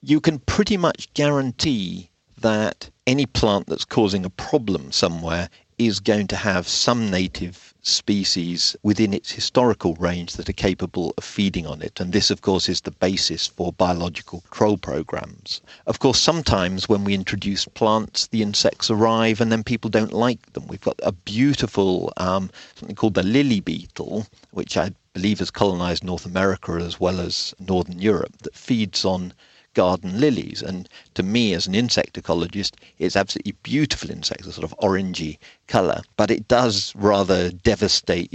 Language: English